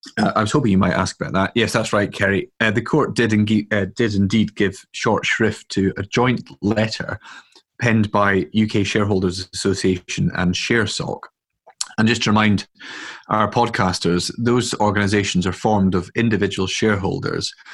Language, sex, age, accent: English, male, 30-49, British